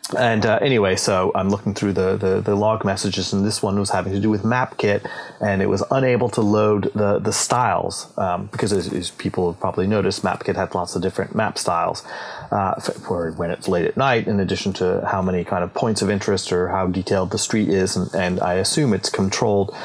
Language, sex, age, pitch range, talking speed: English, male, 30-49, 95-115 Hz, 225 wpm